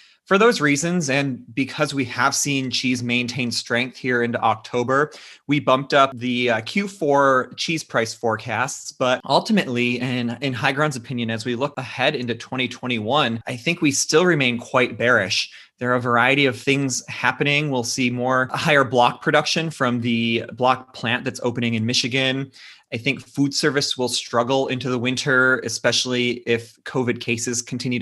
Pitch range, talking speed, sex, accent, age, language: 115-135 Hz, 165 wpm, male, American, 30-49, English